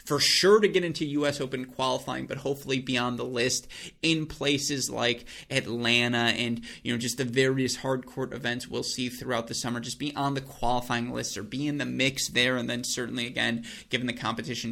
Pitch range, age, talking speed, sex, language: 120-140 Hz, 20-39, 210 wpm, male, English